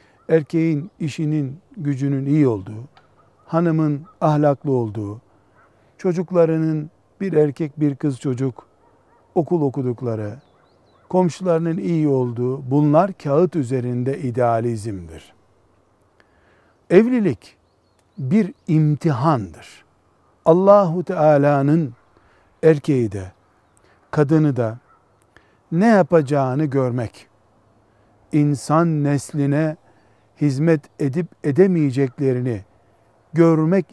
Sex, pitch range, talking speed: male, 110-160 Hz, 75 wpm